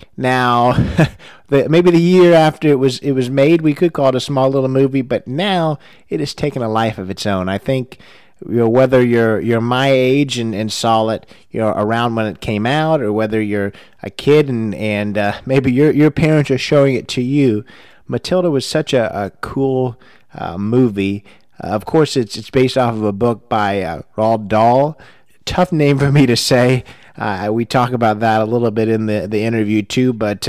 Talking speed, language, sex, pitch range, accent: 215 wpm, English, male, 110-135 Hz, American